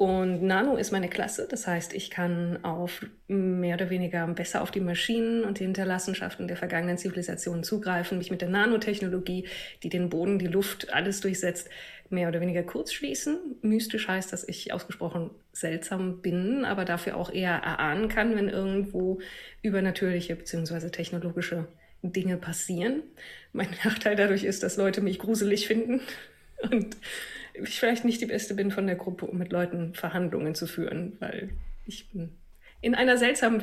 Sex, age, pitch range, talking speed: female, 20-39, 175-210 Hz, 160 wpm